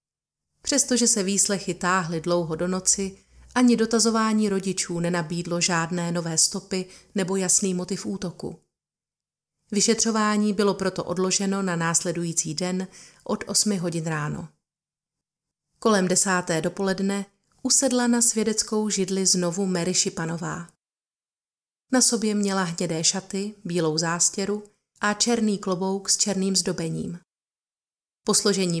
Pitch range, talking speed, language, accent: 175-215 Hz, 110 wpm, Czech, native